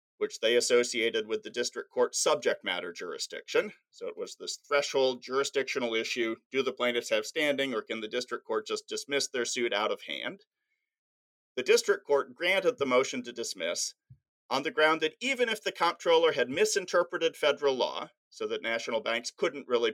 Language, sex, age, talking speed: English, male, 40-59, 180 wpm